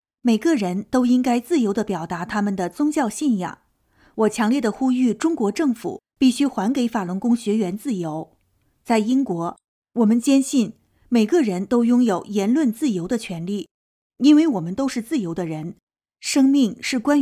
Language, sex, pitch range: Chinese, female, 200-265 Hz